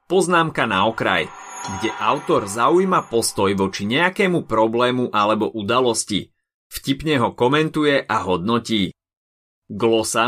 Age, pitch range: 30-49, 100-135 Hz